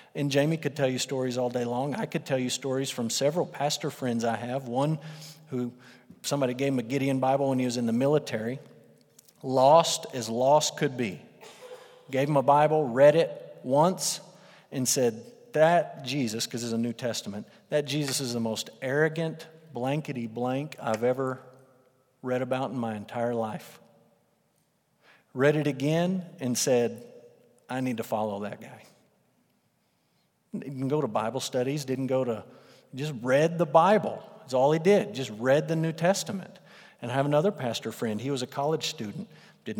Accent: American